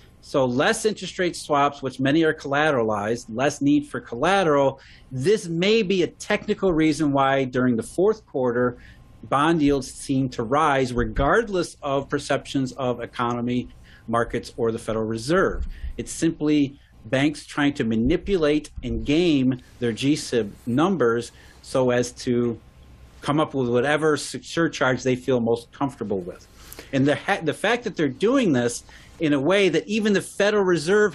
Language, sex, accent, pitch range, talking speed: English, male, American, 125-170 Hz, 150 wpm